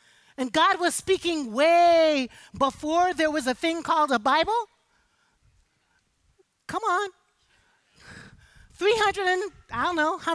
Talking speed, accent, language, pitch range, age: 120 wpm, American, English, 240-345 Hz, 40-59